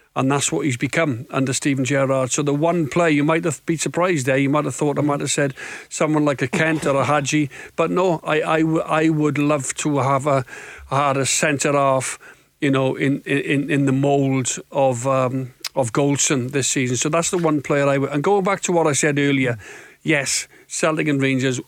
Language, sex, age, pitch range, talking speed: English, male, 50-69, 130-145 Hz, 205 wpm